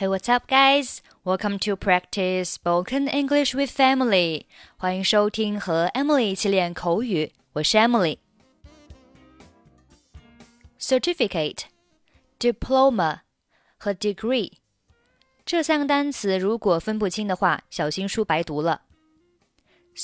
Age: 20-39